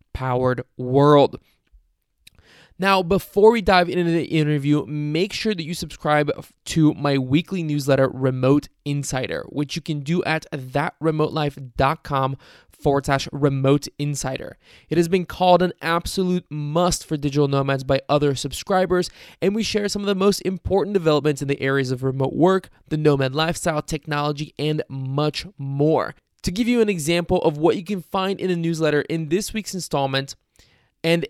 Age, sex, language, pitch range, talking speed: 20-39, male, English, 145-180 Hz, 160 wpm